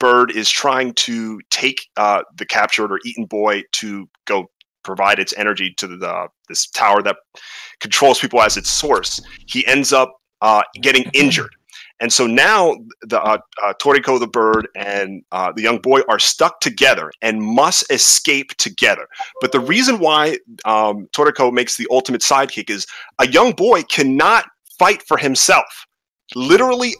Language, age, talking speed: English, 30-49, 160 wpm